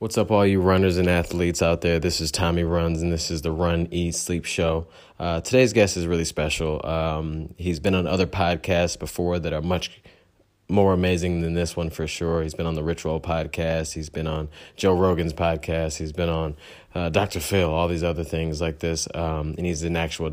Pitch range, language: 80-90 Hz, English